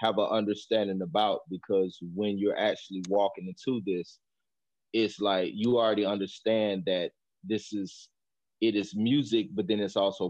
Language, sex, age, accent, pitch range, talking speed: English, male, 30-49, American, 95-110 Hz, 150 wpm